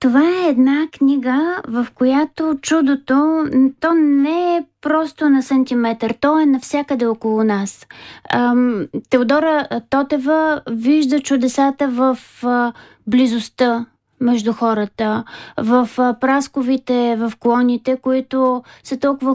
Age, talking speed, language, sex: 20-39, 100 wpm, Bulgarian, female